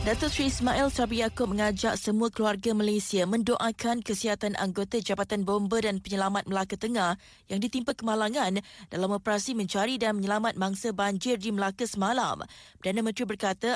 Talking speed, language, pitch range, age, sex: 150 wpm, Malay, 200-235 Hz, 20-39, female